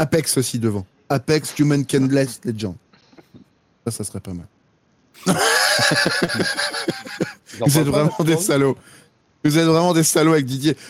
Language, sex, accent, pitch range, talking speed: French, male, French, 130-170 Hz, 140 wpm